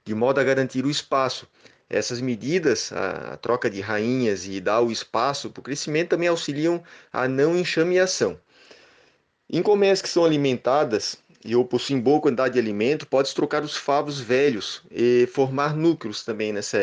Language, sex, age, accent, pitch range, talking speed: Portuguese, male, 20-39, Brazilian, 125-150 Hz, 165 wpm